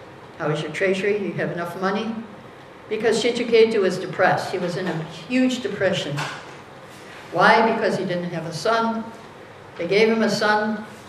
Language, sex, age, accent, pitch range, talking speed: English, female, 60-79, American, 165-205 Hz, 160 wpm